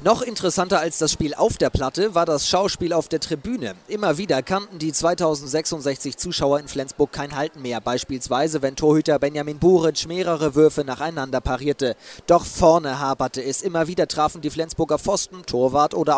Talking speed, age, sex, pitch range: 170 wpm, 30-49, male, 145-180 Hz